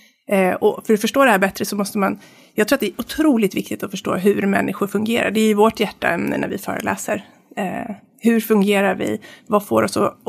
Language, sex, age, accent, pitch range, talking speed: English, female, 30-49, Swedish, 190-240 Hz, 225 wpm